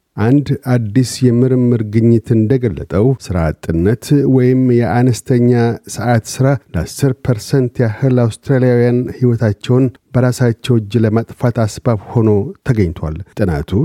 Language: Amharic